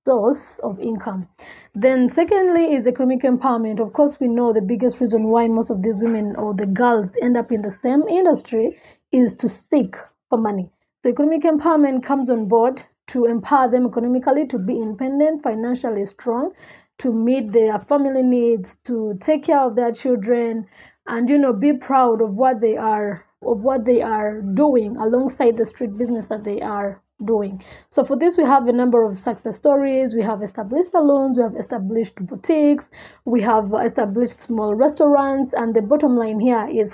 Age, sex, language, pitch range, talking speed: 20-39, female, English, 225-275 Hz, 180 wpm